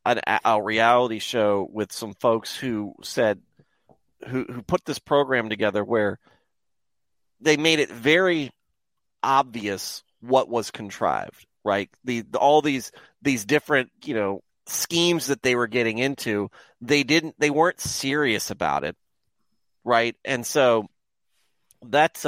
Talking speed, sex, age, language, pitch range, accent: 135 wpm, male, 40-59, English, 115-150 Hz, American